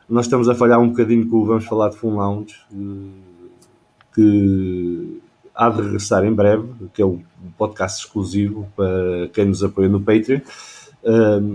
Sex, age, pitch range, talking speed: male, 20-39, 100-120 Hz, 150 wpm